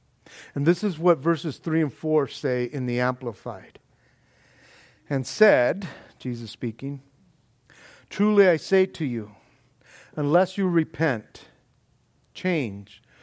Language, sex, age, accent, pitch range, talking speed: English, male, 50-69, American, 135-200 Hz, 115 wpm